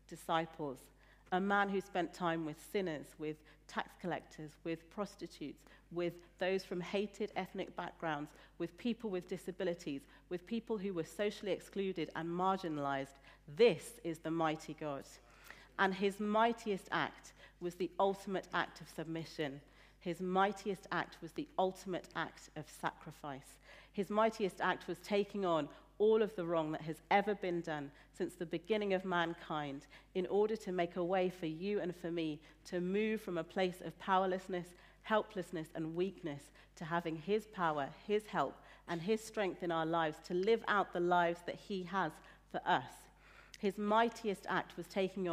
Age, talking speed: 40-59, 165 wpm